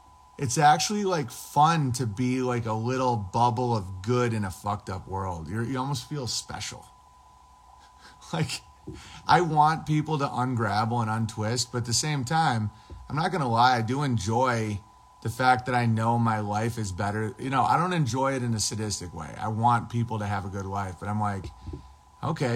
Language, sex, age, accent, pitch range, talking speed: English, male, 30-49, American, 105-130 Hz, 195 wpm